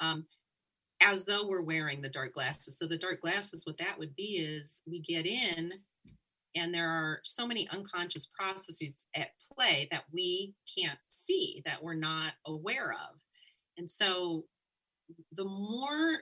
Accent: American